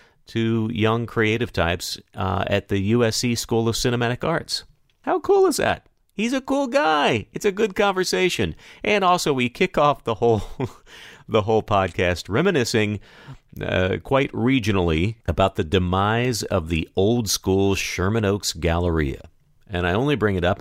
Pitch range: 85-115 Hz